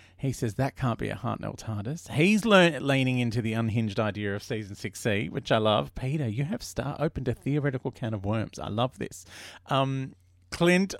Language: English